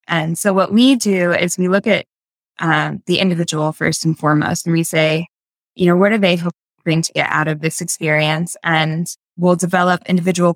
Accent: American